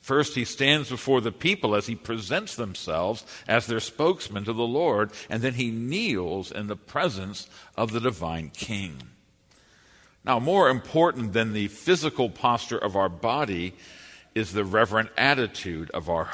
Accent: American